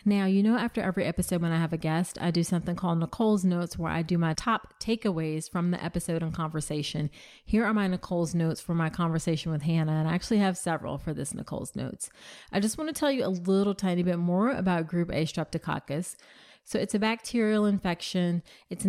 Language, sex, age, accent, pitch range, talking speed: English, female, 30-49, American, 165-195 Hz, 215 wpm